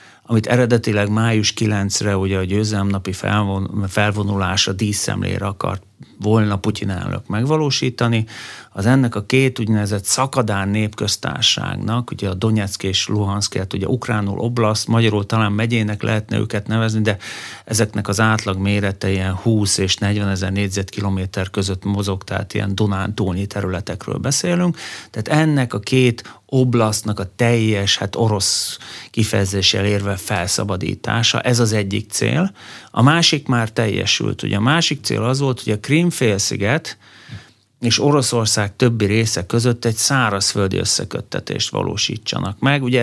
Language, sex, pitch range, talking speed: Hungarian, male, 100-120 Hz, 130 wpm